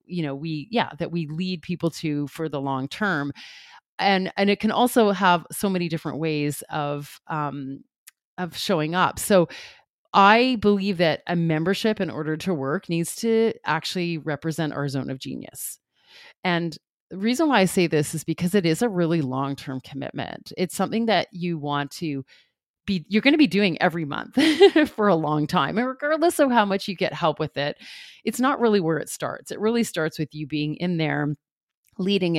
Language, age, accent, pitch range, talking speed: English, 30-49, American, 150-195 Hz, 195 wpm